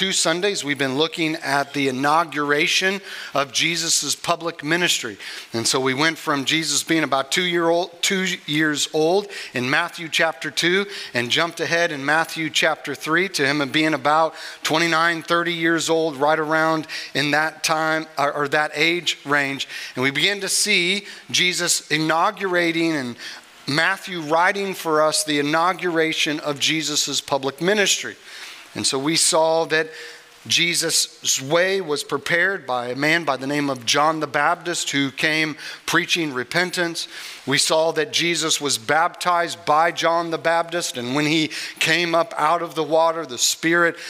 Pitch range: 145-170 Hz